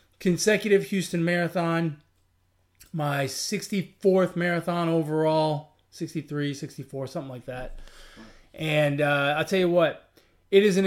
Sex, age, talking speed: male, 20-39, 115 wpm